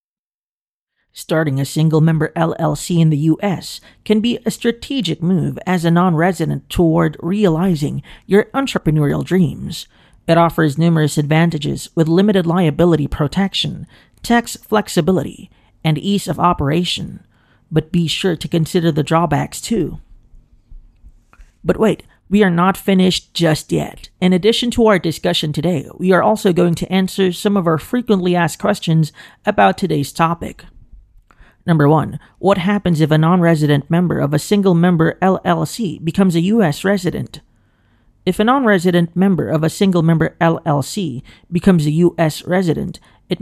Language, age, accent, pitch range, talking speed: English, 40-59, American, 155-190 Hz, 140 wpm